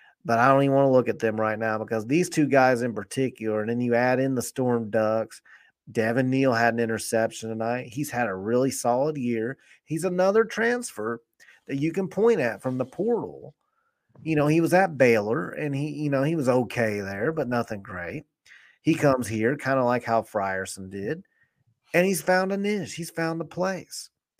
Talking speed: 205 wpm